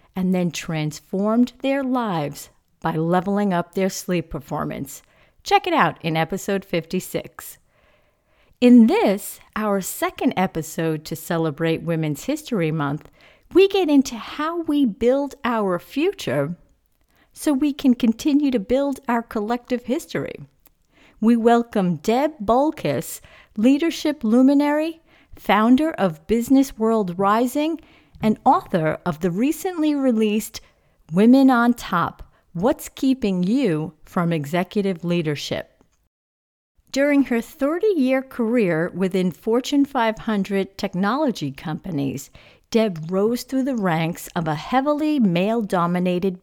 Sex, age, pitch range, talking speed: female, 50-69, 175-265 Hz, 115 wpm